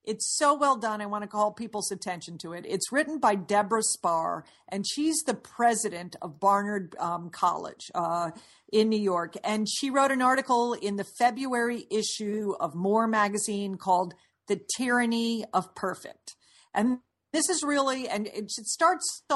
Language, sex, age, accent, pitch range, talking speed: English, female, 50-69, American, 195-245 Hz, 165 wpm